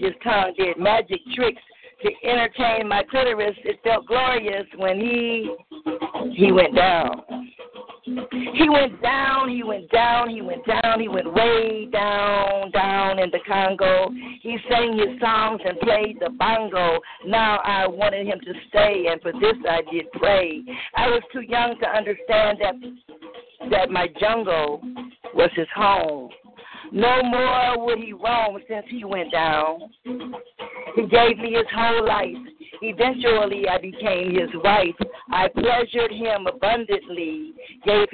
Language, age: English, 50-69